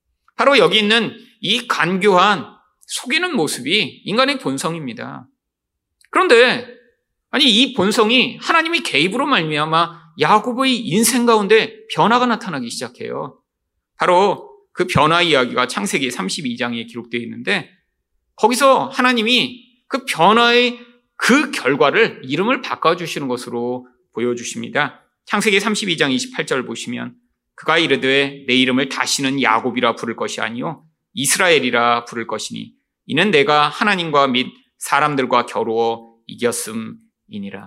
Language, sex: Korean, male